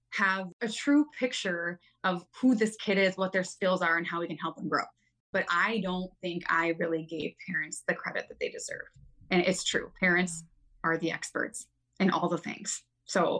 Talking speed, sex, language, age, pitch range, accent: 200 wpm, female, English, 20-39, 175-220 Hz, American